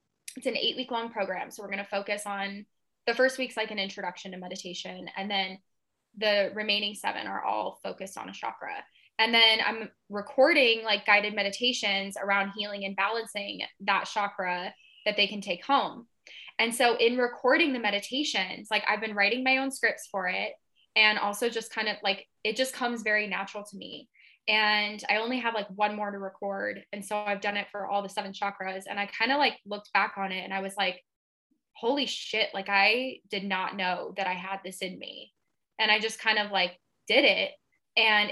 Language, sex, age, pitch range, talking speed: English, female, 10-29, 200-245 Hz, 205 wpm